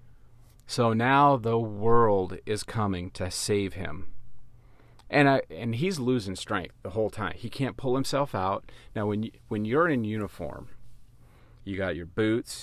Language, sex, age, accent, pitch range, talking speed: English, male, 40-59, American, 100-120 Hz, 160 wpm